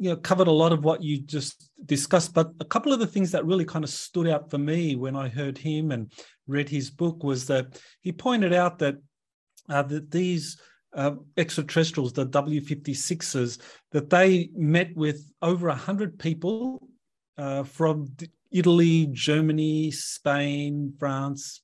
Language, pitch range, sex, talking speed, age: English, 140-175 Hz, male, 160 wpm, 40-59